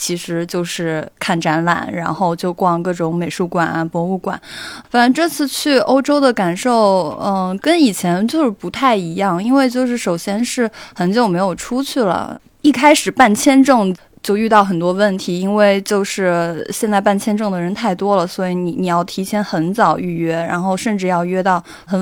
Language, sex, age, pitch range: Chinese, female, 20-39, 175-220 Hz